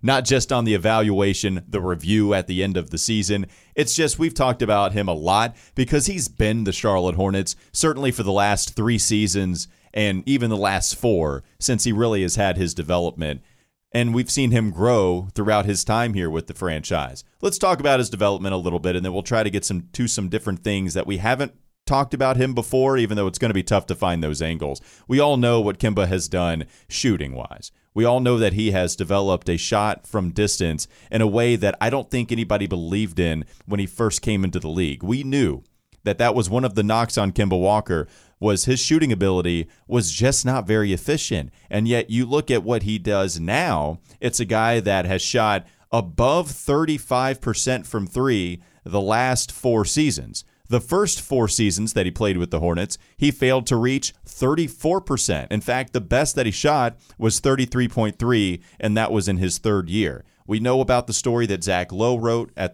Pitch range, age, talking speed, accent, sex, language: 95-125 Hz, 30-49, 210 wpm, American, male, English